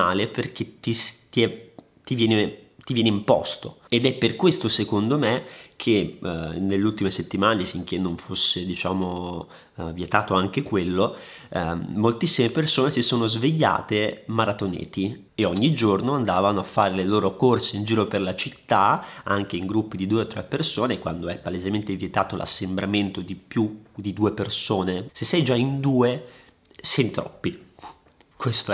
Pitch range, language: 100-120 Hz, Italian